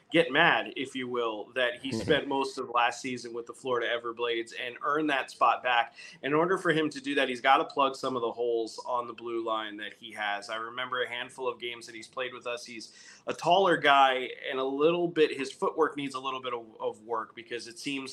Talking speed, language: 245 wpm, English